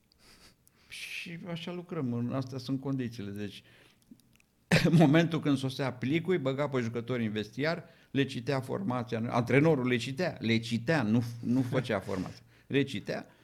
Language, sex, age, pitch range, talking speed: Romanian, male, 50-69, 110-140 Hz, 125 wpm